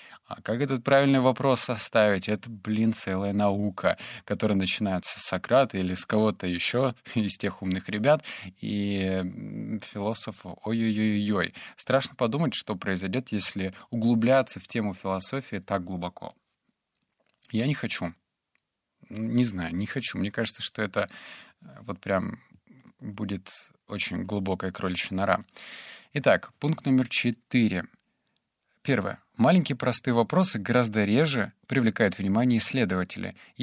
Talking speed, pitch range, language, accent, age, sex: 120 wpm, 95-120 Hz, Russian, native, 20-39, male